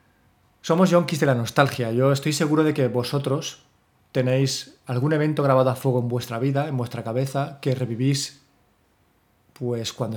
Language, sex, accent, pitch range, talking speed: Spanish, male, Spanish, 120-145 Hz, 160 wpm